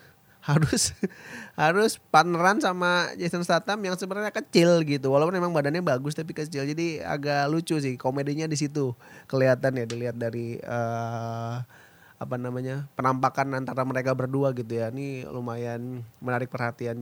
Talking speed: 140 wpm